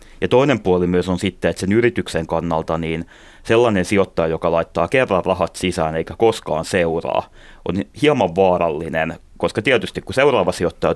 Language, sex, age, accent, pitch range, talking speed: Finnish, male, 30-49, native, 85-105 Hz, 155 wpm